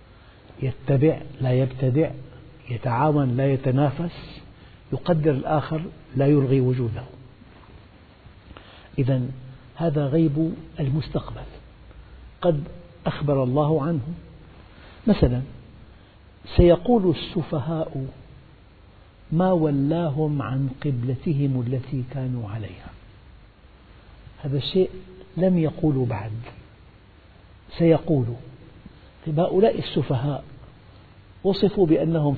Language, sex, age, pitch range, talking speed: Arabic, male, 60-79, 120-155 Hz, 70 wpm